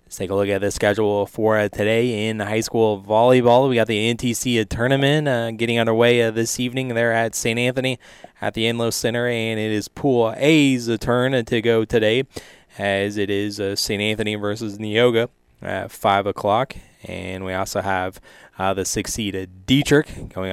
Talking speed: 185 wpm